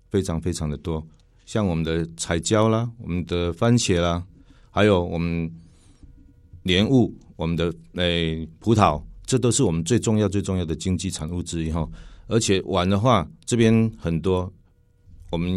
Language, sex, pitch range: Chinese, male, 85-110 Hz